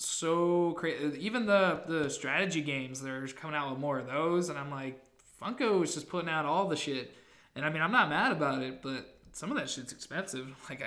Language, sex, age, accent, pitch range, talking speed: English, male, 20-39, American, 140-170 Hz, 210 wpm